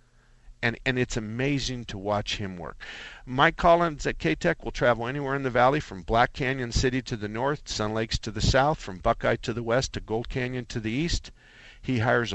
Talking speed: 210 wpm